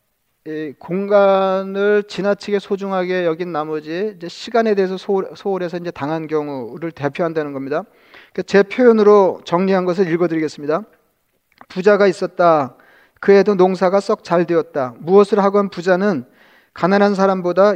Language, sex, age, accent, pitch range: Korean, male, 40-59, native, 170-200 Hz